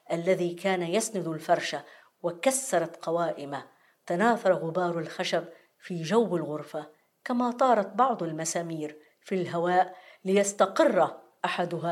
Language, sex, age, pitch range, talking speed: Arabic, female, 50-69, 165-210 Hz, 100 wpm